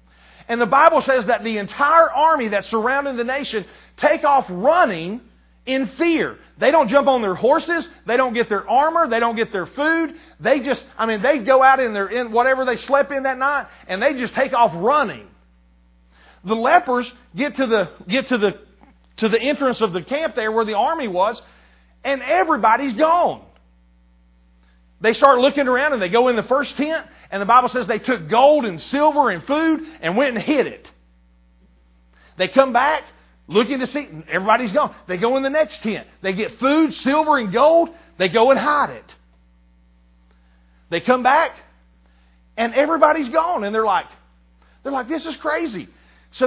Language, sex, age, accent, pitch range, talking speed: English, male, 40-59, American, 190-285 Hz, 185 wpm